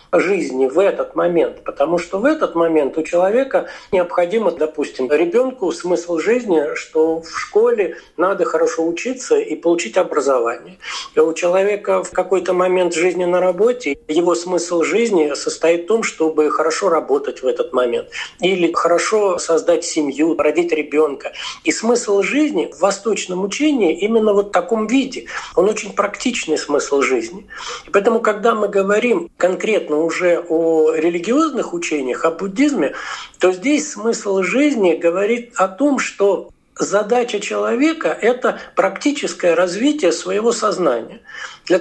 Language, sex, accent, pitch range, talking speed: Russian, male, native, 170-245 Hz, 140 wpm